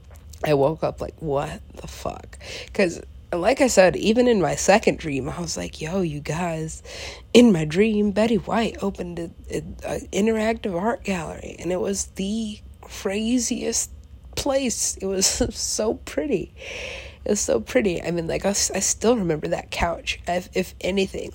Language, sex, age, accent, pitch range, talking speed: English, female, 30-49, American, 170-200 Hz, 170 wpm